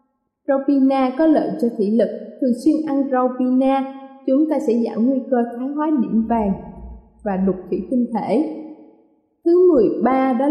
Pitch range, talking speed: 220-290 Hz, 165 wpm